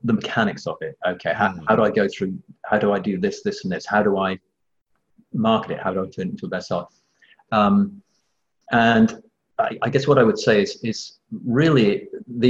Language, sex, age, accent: English, male, 30-49, British